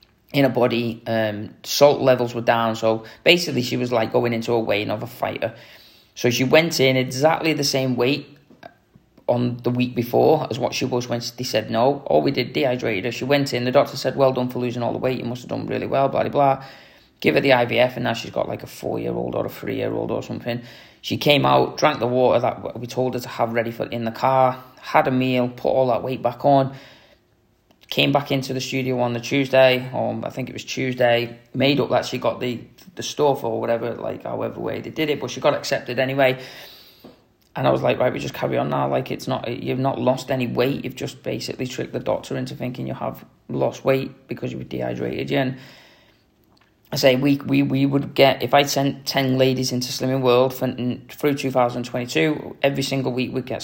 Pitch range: 120-135 Hz